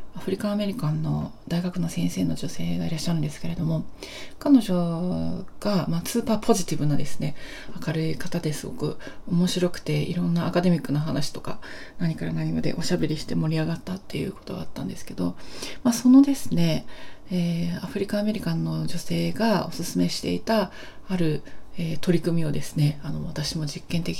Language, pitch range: Japanese, 150-200 Hz